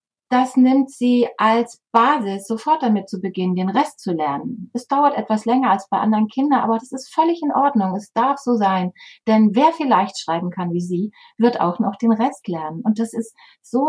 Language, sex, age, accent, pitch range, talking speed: German, female, 30-49, German, 195-240 Hz, 205 wpm